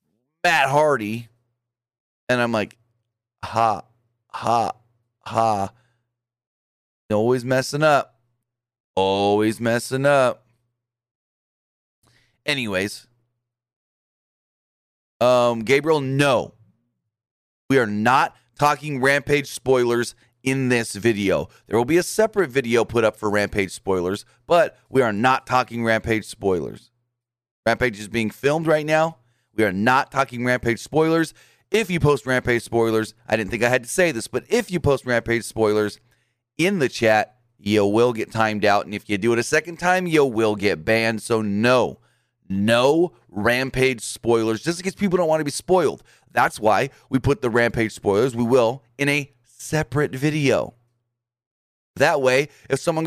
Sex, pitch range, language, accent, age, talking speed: male, 115-135 Hz, English, American, 30-49, 140 wpm